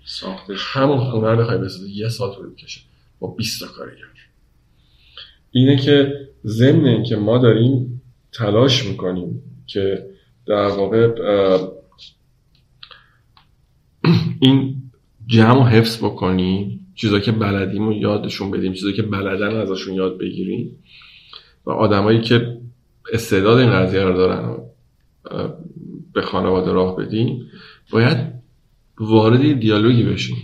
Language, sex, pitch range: Persian, male, 95-125 Hz